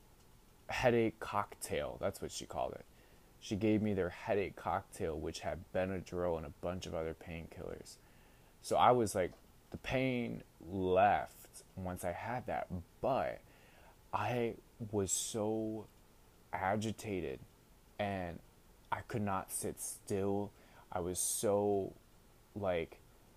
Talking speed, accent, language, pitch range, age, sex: 125 wpm, American, English, 95-115 Hz, 20-39, male